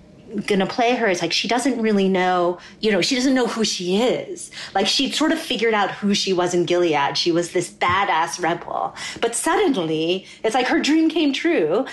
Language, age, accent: English, 30-49, American